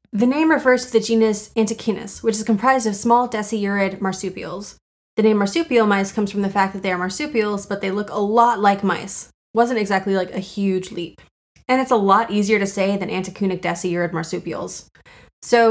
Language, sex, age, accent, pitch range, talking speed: English, female, 20-39, American, 195-230 Hz, 195 wpm